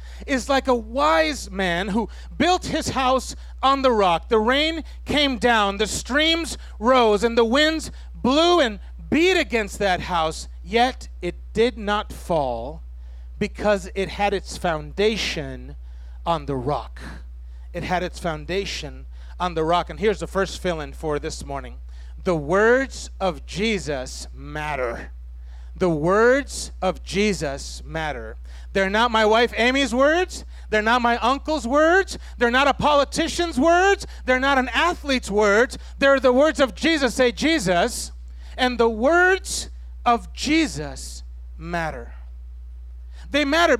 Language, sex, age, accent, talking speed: English, male, 40-59, American, 140 wpm